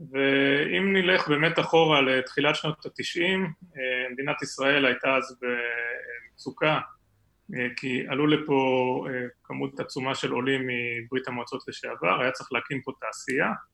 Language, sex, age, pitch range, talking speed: Hebrew, male, 30-49, 130-170 Hz, 120 wpm